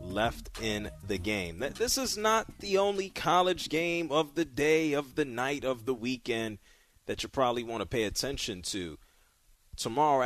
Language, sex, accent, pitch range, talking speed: English, male, American, 105-150 Hz, 170 wpm